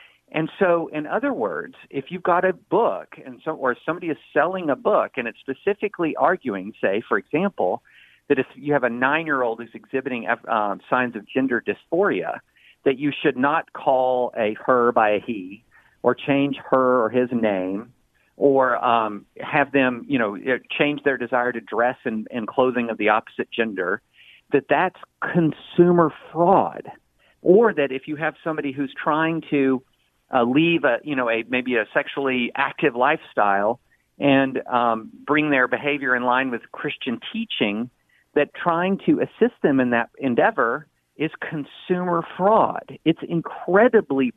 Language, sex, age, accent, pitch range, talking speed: English, male, 50-69, American, 125-160 Hz, 160 wpm